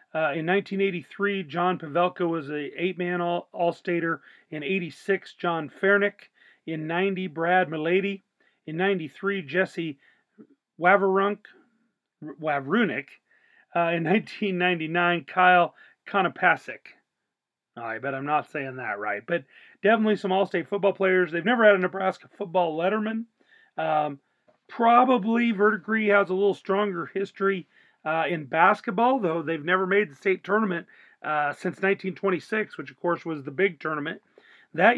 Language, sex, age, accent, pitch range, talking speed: English, male, 40-59, American, 160-195 Hz, 130 wpm